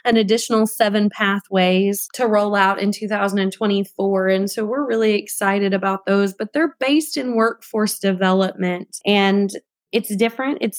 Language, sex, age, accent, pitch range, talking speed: English, female, 20-39, American, 195-225 Hz, 145 wpm